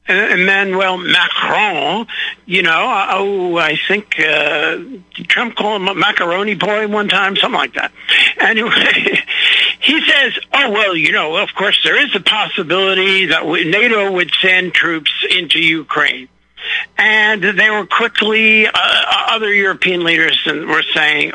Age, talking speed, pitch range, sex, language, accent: 60-79, 145 wpm, 185-260 Hz, male, English, American